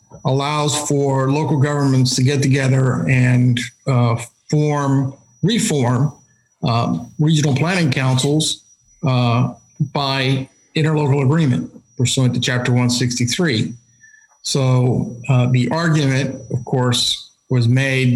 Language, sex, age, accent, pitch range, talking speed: English, male, 50-69, American, 125-145 Hz, 110 wpm